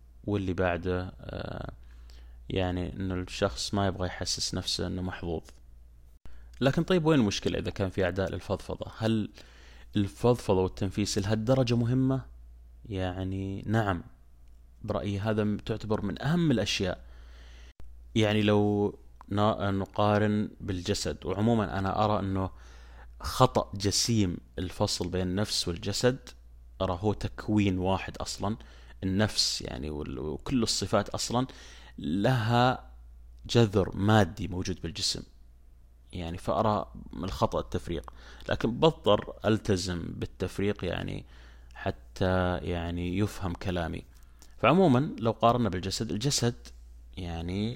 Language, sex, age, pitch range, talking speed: Arabic, male, 20-39, 65-105 Hz, 105 wpm